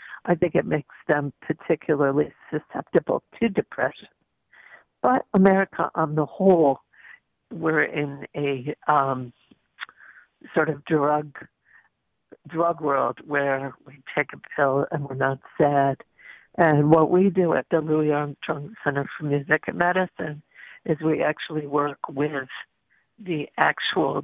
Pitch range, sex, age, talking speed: 145-170 Hz, female, 60-79, 130 wpm